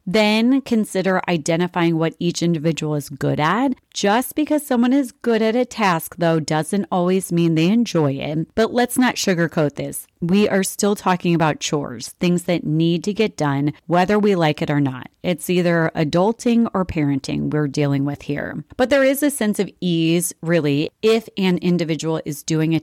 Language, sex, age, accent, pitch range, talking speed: English, female, 30-49, American, 155-210 Hz, 185 wpm